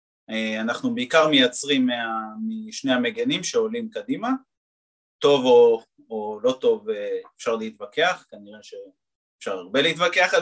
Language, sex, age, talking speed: Hebrew, male, 30-49, 120 wpm